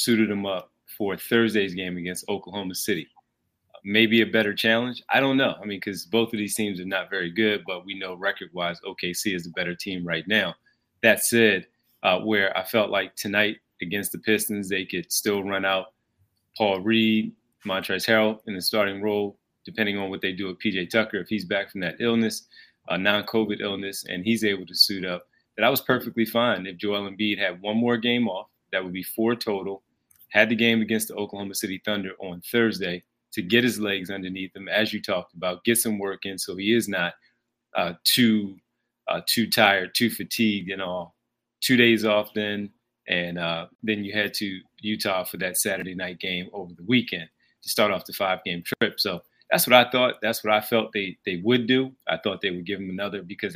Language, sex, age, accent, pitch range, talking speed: English, male, 30-49, American, 95-110 Hz, 210 wpm